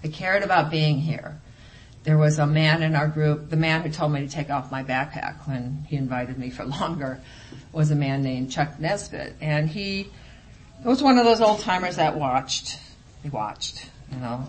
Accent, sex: American, female